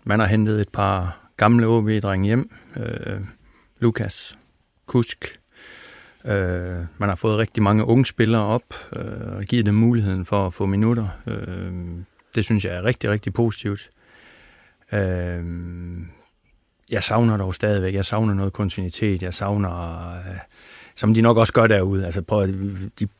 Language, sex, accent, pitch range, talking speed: Danish, male, native, 95-115 Hz, 150 wpm